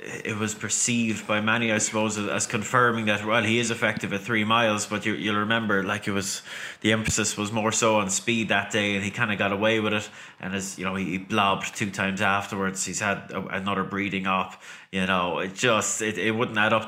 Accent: Irish